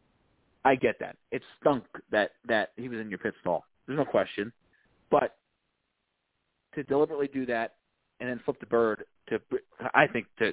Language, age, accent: English, 30-49, American